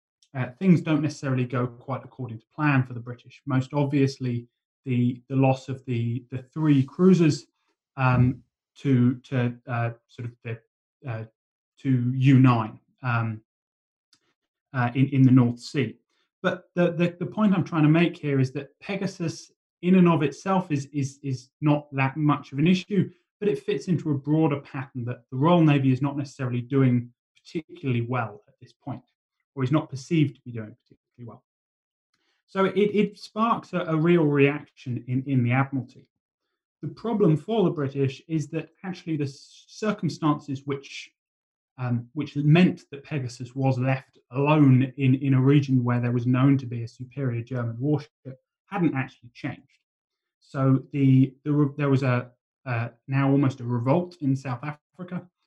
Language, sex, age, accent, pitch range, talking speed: English, male, 20-39, British, 125-155 Hz, 170 wpm